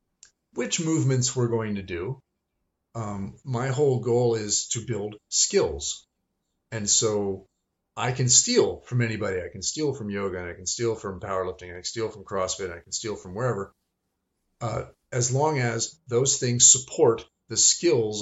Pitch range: 95-125 Hz